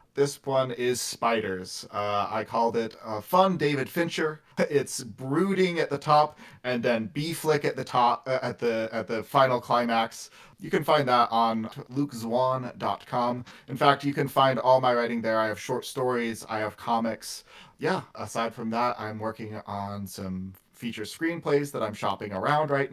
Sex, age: male, 30-49